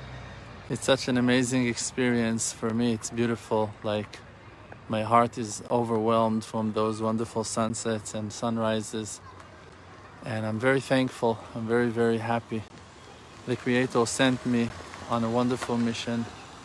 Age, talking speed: 20-39, 130 wpm